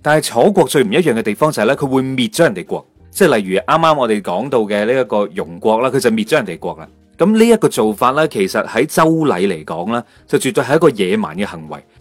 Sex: male